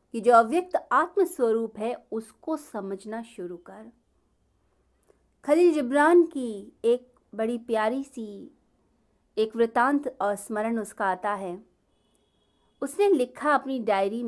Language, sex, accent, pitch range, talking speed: Hindi, female, native, 205-275 Hz, 120 wpm